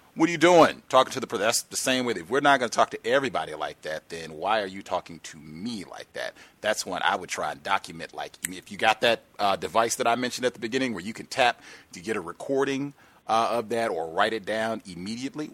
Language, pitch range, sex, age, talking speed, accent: English, 105-150 Hz, male, 40-59, 255 wpm, American